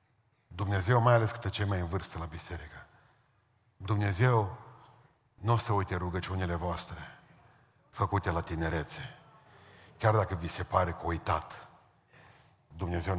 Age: 50-69